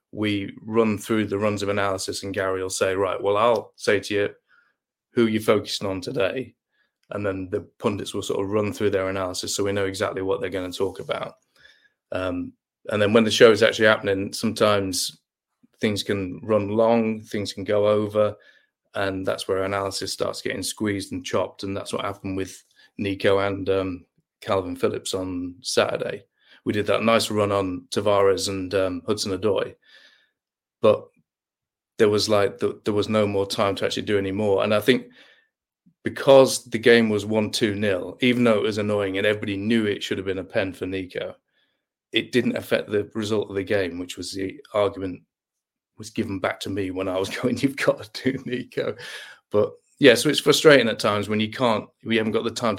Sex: male